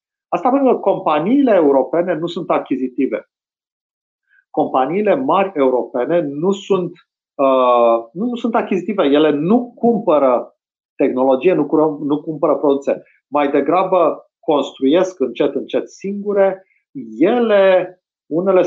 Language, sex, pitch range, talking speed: Romanian, male, 125-180 Hz, 115 wpm